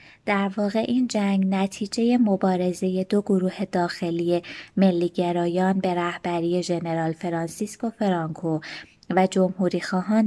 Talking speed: 110 wpm